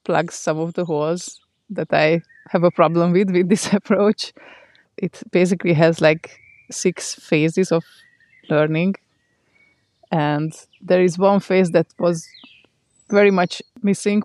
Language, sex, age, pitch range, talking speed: English, female, 20-39, 165-195 Hz, 135 wpm